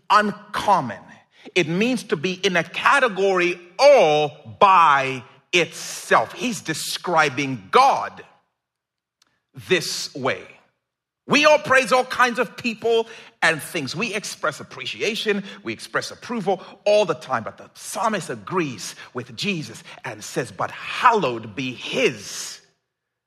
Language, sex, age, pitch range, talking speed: English, male, 40-59, 135-220 Hz, 120 wpm